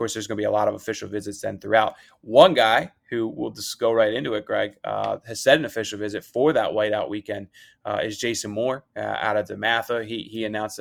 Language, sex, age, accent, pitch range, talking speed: English, male, 20-39, American, 105-120 Hz, 235 wpm